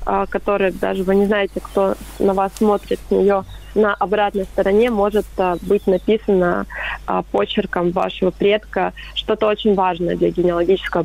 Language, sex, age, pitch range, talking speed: Russian, female, 20-39, 185-210 Hz, 130 wpm